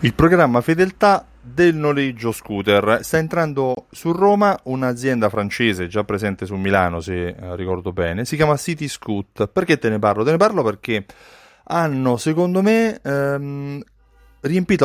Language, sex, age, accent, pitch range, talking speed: Italian, male, 30-49, native, 100-140 Hz, 140 wpm